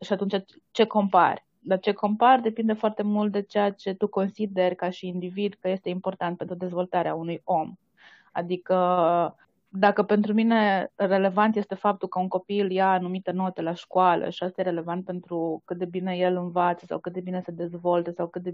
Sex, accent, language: female, native, Romanian